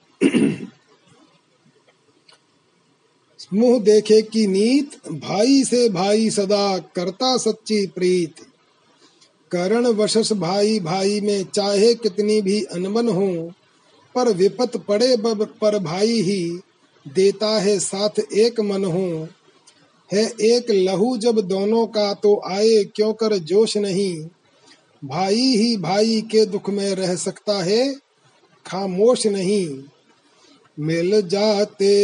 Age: 30-49